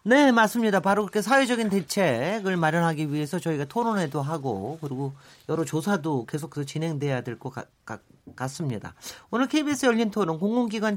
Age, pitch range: 40-59, 150-210 Hz